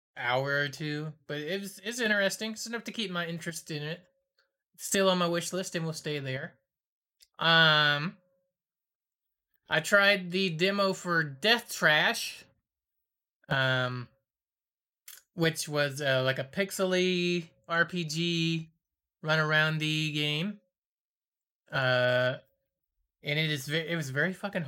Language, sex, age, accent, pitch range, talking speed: English, male, 20-39, American, 145-180 Hz, 135 wpm